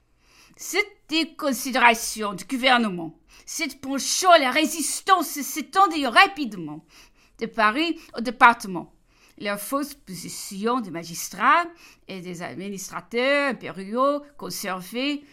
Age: 50-69